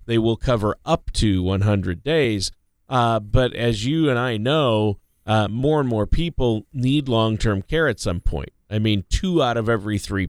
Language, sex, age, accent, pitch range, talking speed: English, male, 40-59, American, 100-125 Hz, 185 wpm